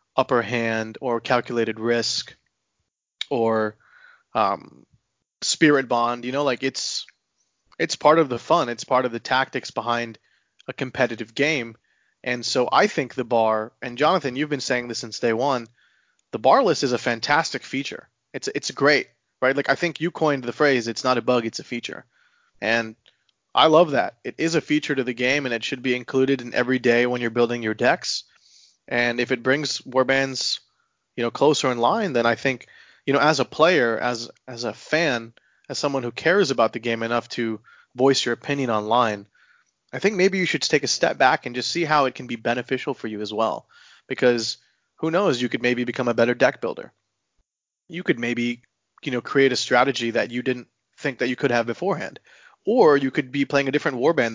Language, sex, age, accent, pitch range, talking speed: English, male, 20-39, American, 120-135 Hz, 200 wpm